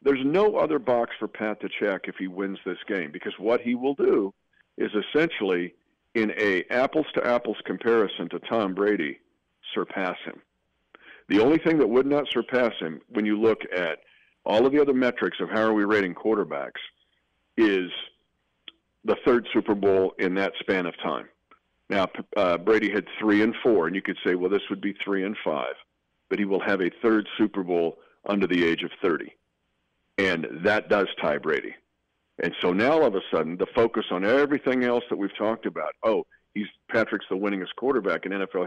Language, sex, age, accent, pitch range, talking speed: English, male, 50-69, American, 95-120 Hz, 190 wpm